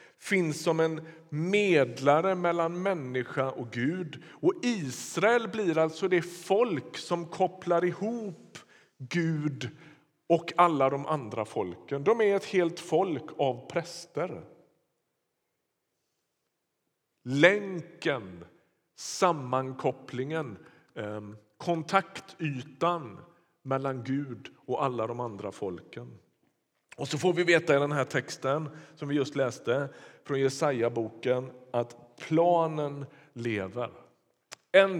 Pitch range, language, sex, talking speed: 130-175 Hz, Swedish, male, 100 wpm